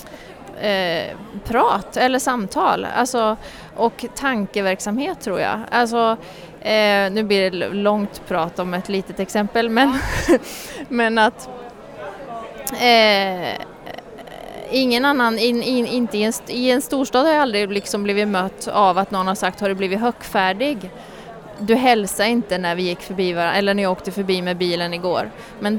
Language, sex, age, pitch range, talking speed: Swedish, female, 30-49, 185-230 Hz, 130 wpm